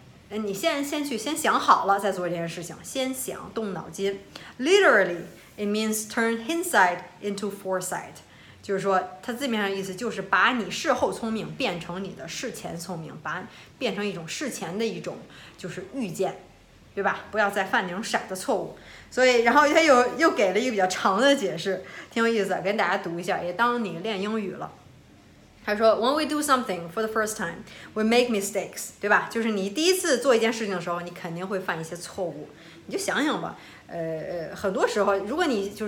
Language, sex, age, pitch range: Chinese, female, 20-39, 185-235 Hz